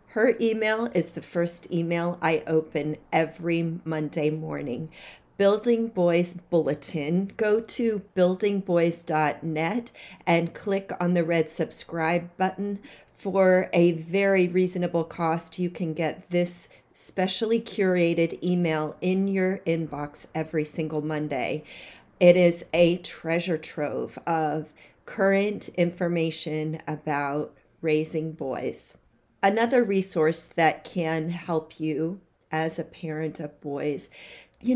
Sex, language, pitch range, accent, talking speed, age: female, English, 160-190 Hz, American, 110 wpm, 40-59